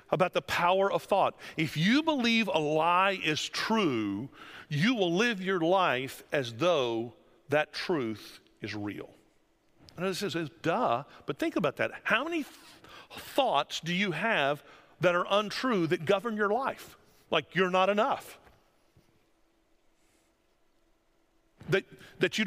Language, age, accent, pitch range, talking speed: English, 50-69, American, 170-245 Hz, 140 wpm